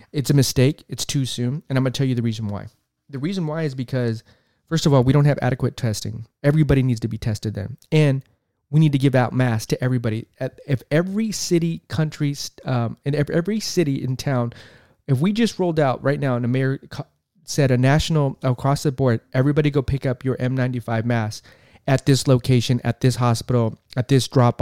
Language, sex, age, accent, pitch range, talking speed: English, male, 30-49, American, 120-150 Hz, 205 wpm